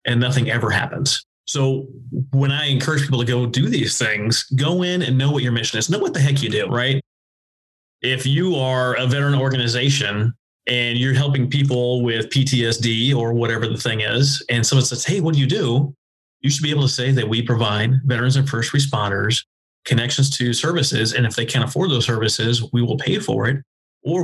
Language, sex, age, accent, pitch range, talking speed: English, male, 30-49, American, 115-140 Hz, 205 wpm